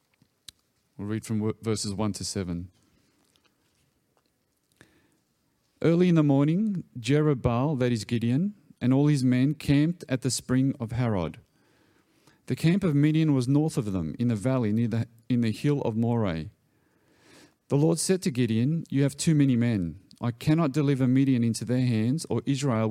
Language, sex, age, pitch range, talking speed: English, male, 40-59, 115-150 Hz, 160 wpm